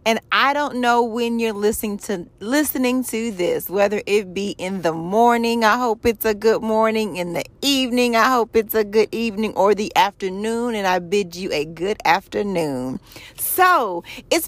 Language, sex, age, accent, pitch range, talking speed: English, female, 40-59, American, 195-245 Hz, 180 wpm